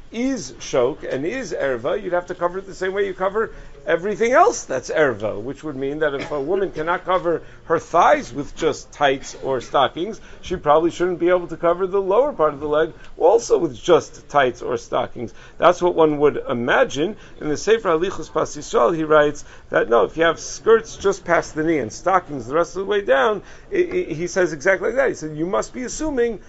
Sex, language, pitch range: male, English, 150-195 Hz